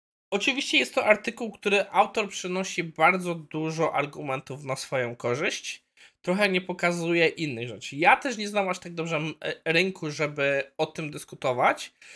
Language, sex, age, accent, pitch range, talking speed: Polish, male, 20-39, native, 135-180 Hz, 150 wpm